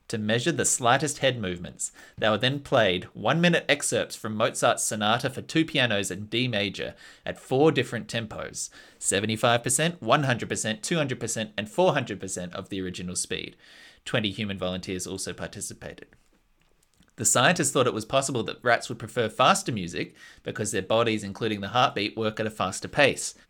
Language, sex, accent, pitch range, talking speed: English, male, Australian, 105-140 Hz, 160 wpm